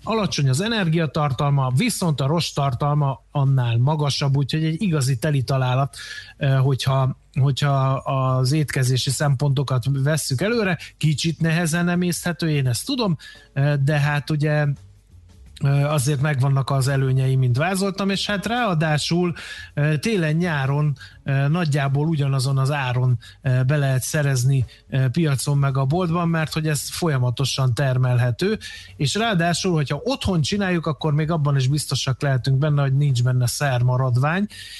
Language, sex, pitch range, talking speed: Hungarian, male, 130-160 Hz, 125 wpm